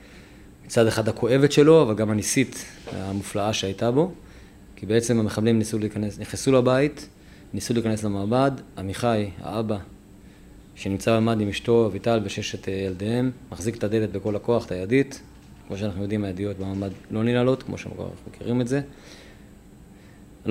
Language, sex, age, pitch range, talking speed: Hebrew, male, 20-39, 100-120 Hz, 145 wpm